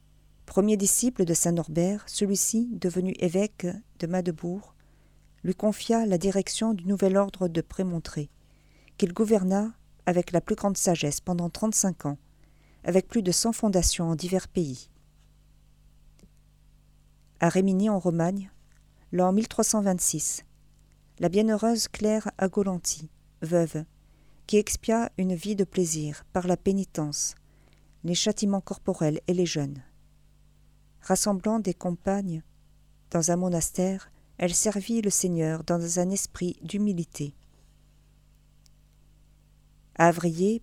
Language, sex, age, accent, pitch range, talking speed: French, female, 40-59, French, 165-200 Hz, 115 wpm